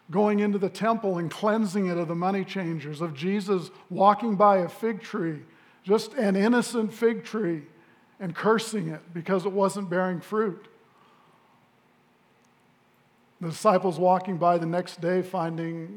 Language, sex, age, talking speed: English, male, 50-69, 145 wpm